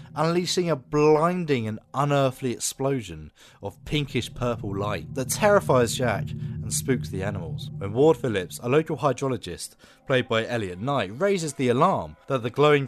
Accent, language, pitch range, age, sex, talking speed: British, English, 115-150 Hz, 30-49, male, 155 wpm